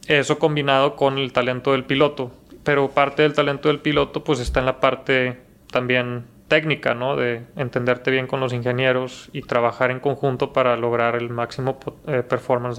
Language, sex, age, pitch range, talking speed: Spanish, male, 20-39, 125-145 Hz, 170 wpm